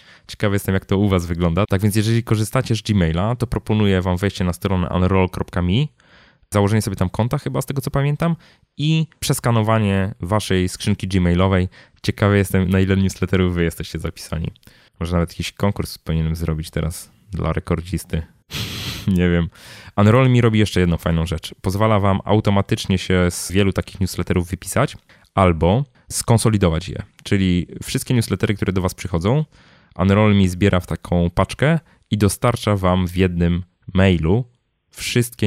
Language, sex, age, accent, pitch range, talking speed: Polish, male, 20-39, native, 85-110 Hz, 155 wpm